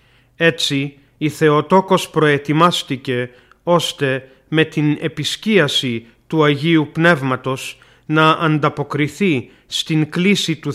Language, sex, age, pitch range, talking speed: Greek, male, 40-59, 135-165 Hz, 90 wpm